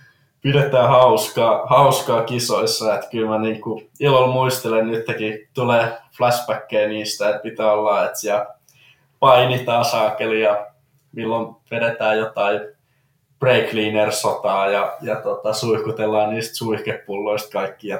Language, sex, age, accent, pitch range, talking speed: Finnish, male, 20-39, native, 105-130 Hz, 110 wpm